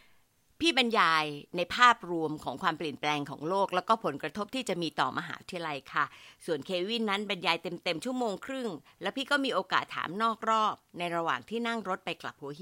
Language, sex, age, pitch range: Thai, female, 60-79, 170-250 Hz